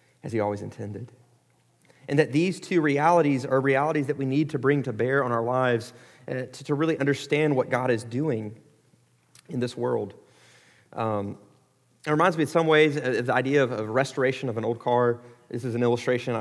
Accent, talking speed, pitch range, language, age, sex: American, 200 wpm, 110-140 Hz, English, 30-49, male